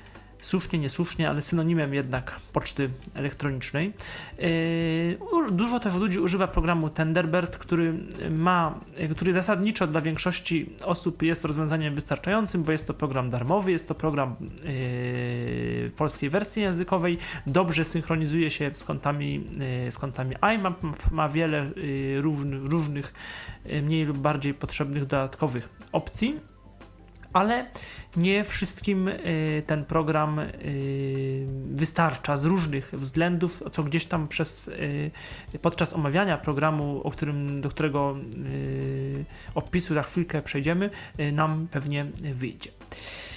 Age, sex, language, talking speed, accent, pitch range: 40-59, male, Polish, 110 wpm, native, 140-180 Hz